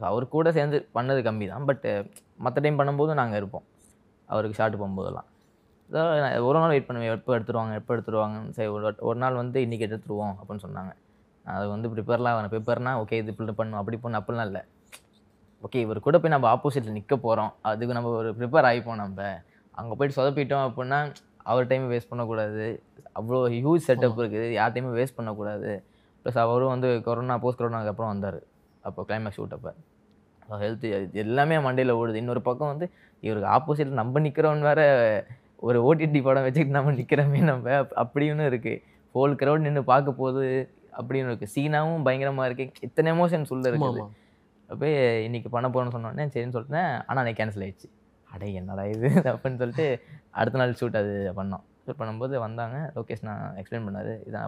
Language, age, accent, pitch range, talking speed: Tamil, 20-39, native, 110-135 Hz, 165 wpm